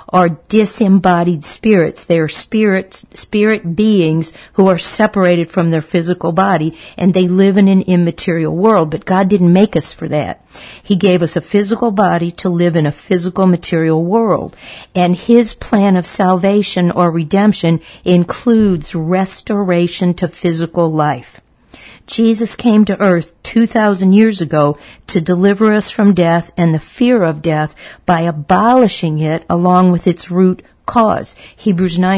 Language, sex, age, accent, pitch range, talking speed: English, female, 50-69, American, 170-200 Hz, 150 wpm